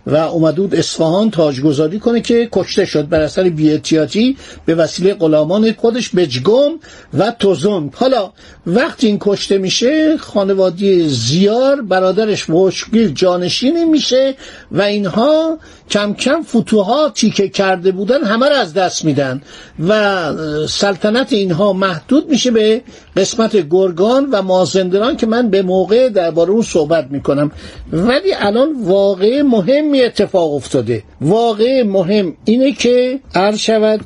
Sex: male